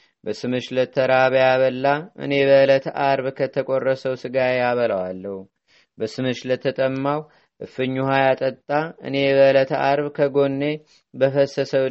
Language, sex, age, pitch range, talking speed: Amharic, male, 30-49, 130-140 Hz, 80 wpm